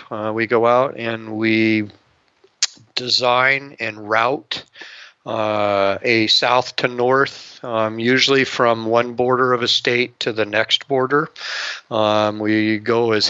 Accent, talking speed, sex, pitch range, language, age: American, 135 wpm, male, 110-125 Hz, English, 40-59